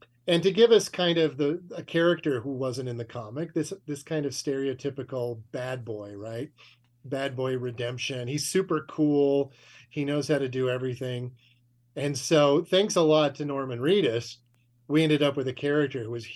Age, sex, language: 40-59, male, English